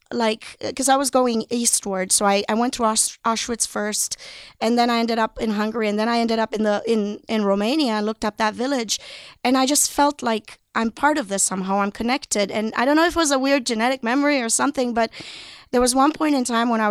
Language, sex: English, female